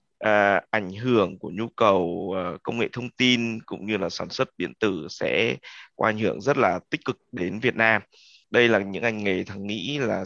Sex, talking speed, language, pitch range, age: male, 205 wpm, Vietnamese, 100-120 Hz, 20-39